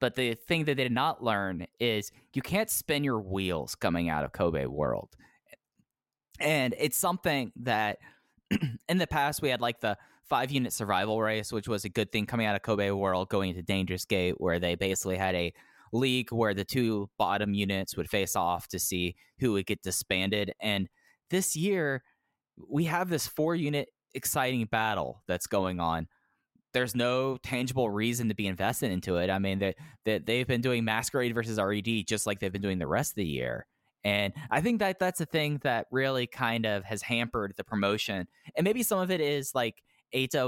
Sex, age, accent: male, 10-29, American